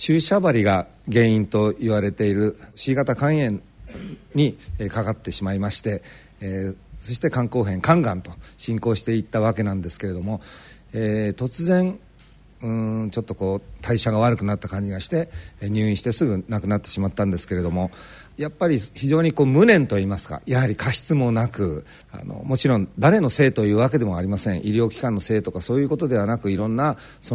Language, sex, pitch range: Japanese, male, 100-135 Hz